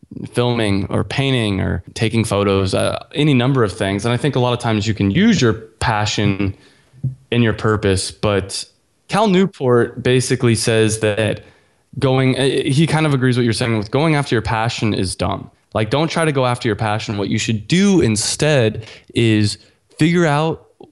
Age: 20-39